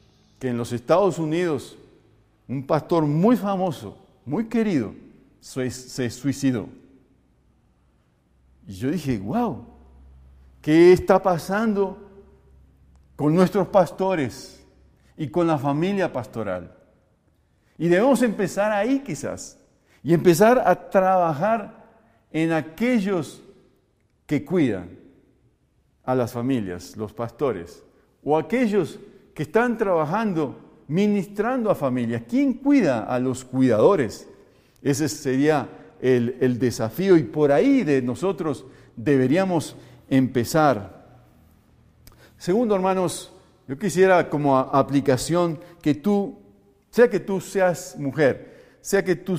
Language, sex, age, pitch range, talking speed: Spanish, male, 50-69, 120-185 Hz, 110 wpm